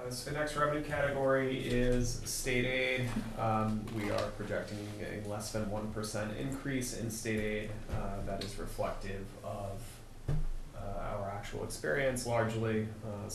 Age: 30-49